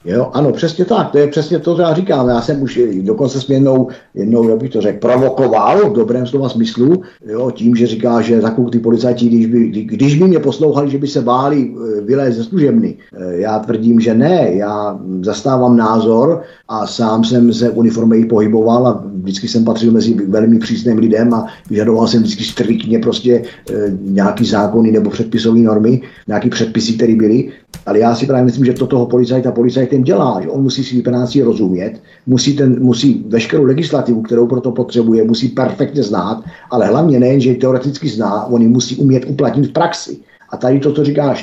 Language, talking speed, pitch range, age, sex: Czech, 185 wpm, 115-130 Hz, 50-69, male